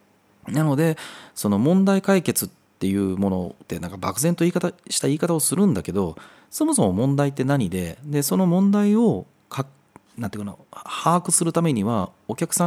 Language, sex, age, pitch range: Japanese, male, 30-49, 100-165 Hz